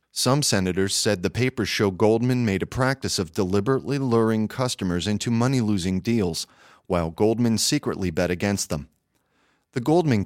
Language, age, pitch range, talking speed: English, 40-59, 95-125 Hz, 145 wpm